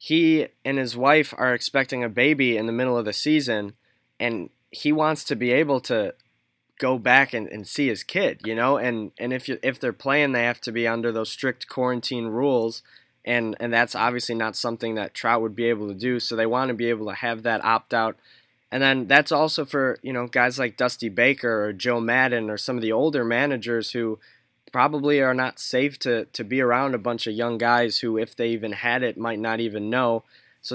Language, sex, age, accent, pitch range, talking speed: English, male, 20-39, American, 115-135 Hz, 225 wpm